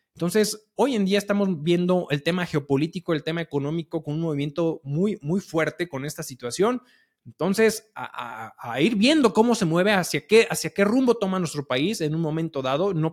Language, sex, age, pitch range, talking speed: Spanish, male, 20-39, 145-185 Hz, 195 wpm